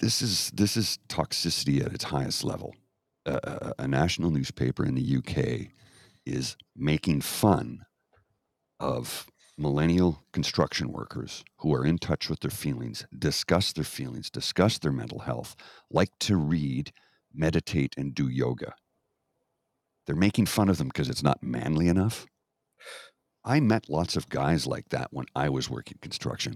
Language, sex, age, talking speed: English, male, 50-69, 150 wpm